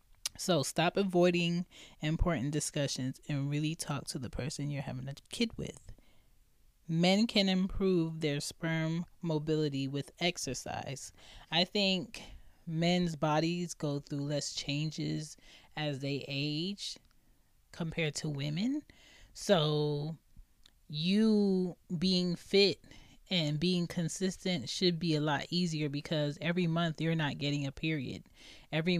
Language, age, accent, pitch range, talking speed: English, 20-39, American, 140-170 Hz, 120 wpm